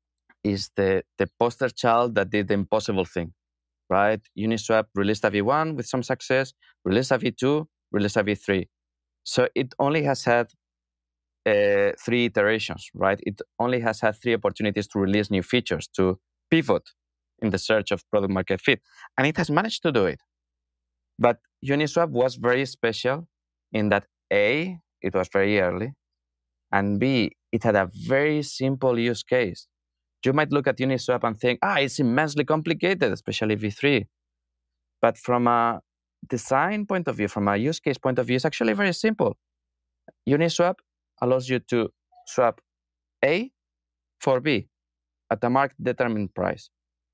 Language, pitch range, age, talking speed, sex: English, 80-130 Hz, 20-39, 160 wpm, male